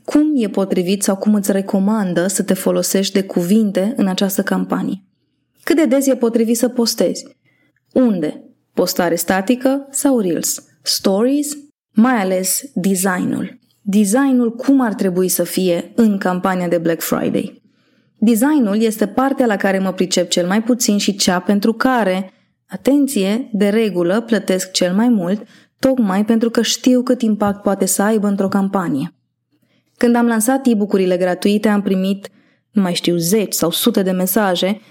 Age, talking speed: 20-39, 155 wpm